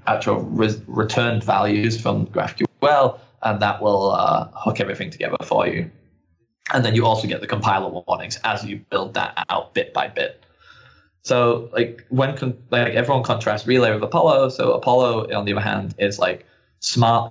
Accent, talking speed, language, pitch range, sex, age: British, 175 wpm, English, 105-120 Hz, male, 10-29